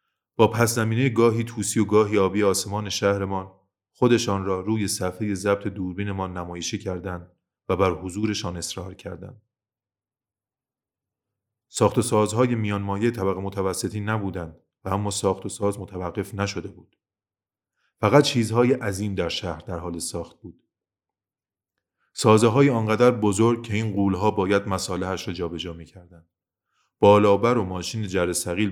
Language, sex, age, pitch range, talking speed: Persian, male, 30-49, 95-110 Hz, 130 wpm